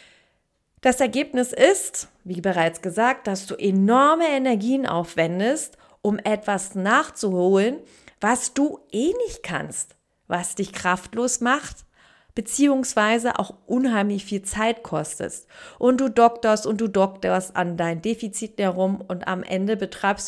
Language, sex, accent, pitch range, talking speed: German, female, German, 185-245 Hz, 125 wpm